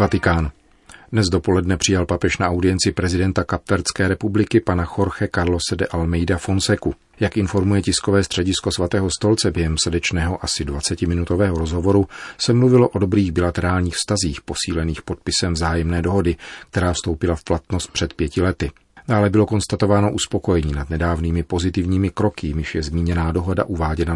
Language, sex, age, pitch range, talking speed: Czech, male, 40-59, 85-100 Hz, 140 wpm